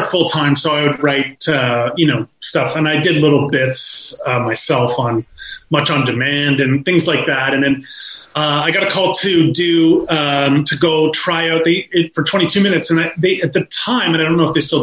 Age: 30-49